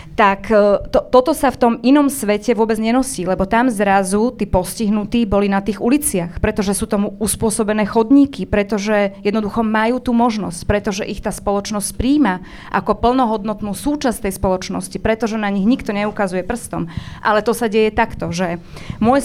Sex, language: female, Slovak